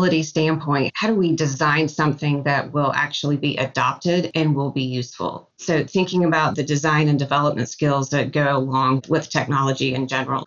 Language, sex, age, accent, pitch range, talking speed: English, female, 30-49, American, 145-175 Hz, 170 wpm